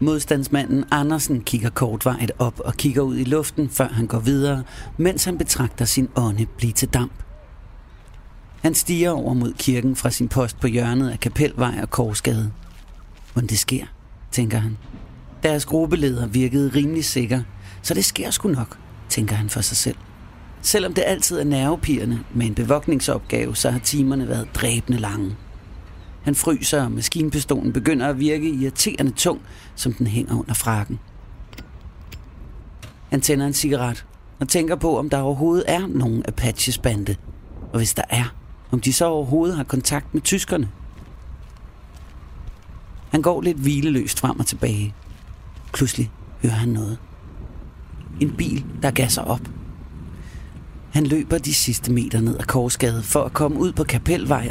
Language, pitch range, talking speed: Danish, 105-145 Hz, 155 wpm